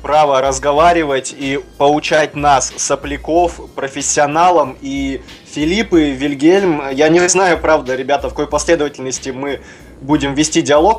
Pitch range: 140-175 Hz